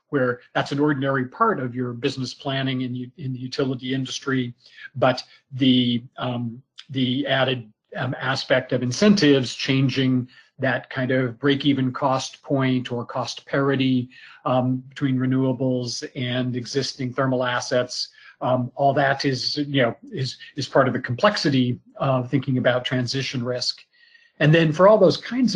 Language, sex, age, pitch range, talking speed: English, male, 40-59, 125-140 Hz, 155 wpm